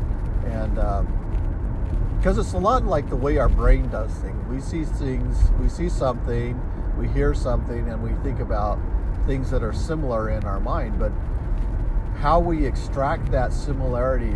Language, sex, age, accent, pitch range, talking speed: English, male, 50-69, American, 90-120 Hz, 165 wpm